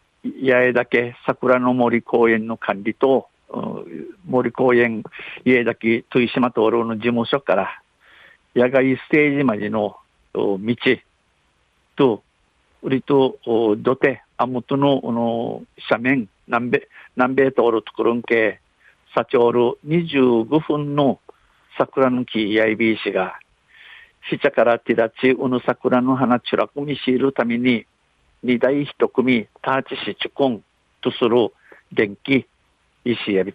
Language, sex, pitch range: Japanese, male, 115-135 Hz